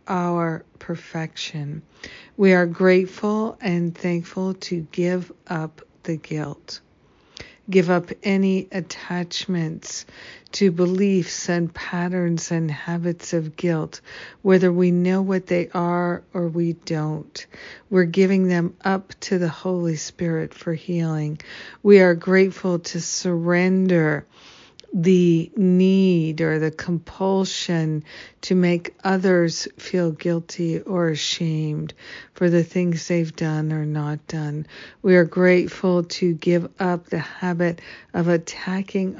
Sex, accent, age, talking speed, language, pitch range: female, American, 50-69, 120 wpm, English, 165-185 Hz